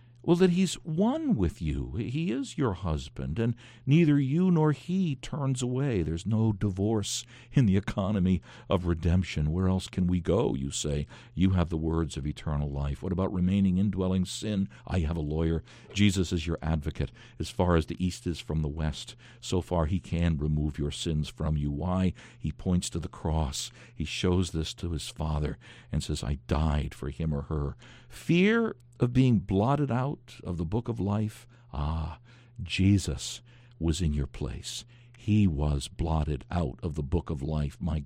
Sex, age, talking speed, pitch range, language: male, 60-79, 185 wpm, 75-120 Hz, English